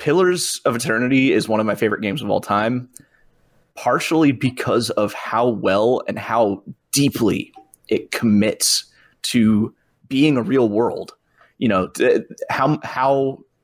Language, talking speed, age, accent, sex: English, 135 wpm, 20-39, American, male